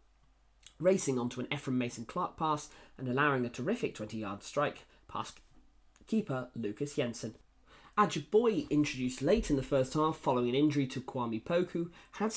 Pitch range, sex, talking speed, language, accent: 120-170 Hz, male, 150 wpm, English, British